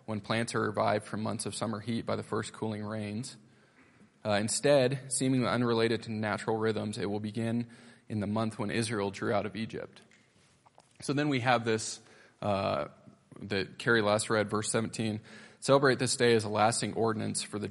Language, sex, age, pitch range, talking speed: English, male, 20-39, 105-115 Hz, 185 wpm